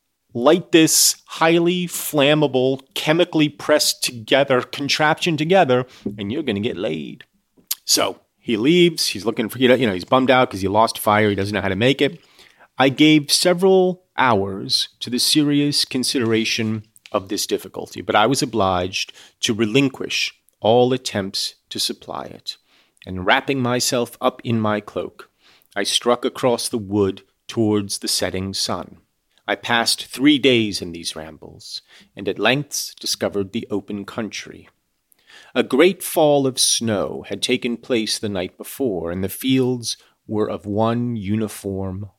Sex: male